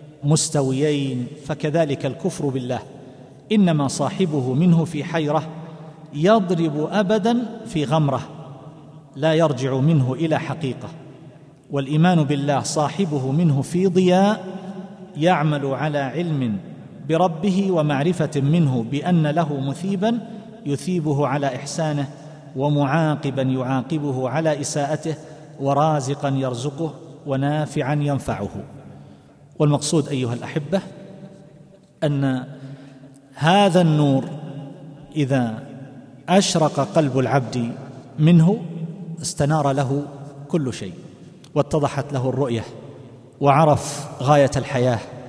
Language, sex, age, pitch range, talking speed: Arabic, male, 40-59, 135-160 Hz, 85 wpm